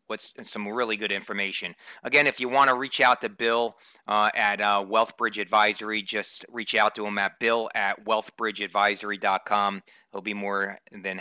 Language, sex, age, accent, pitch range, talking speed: English, male, 30-49, American, 100-120 Hz, 170 wpm